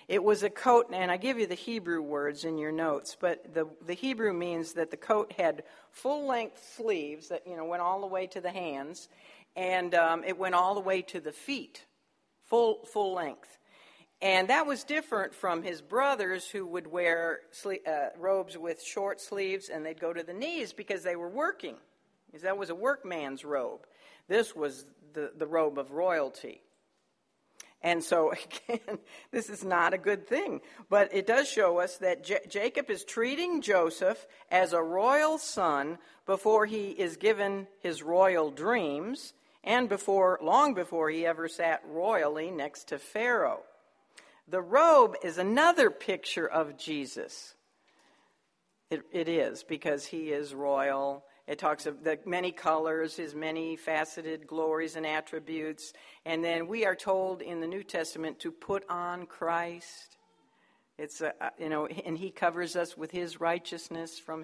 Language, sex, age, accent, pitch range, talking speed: English, female, 60-79, American, 160-205 Hz, 170 wpm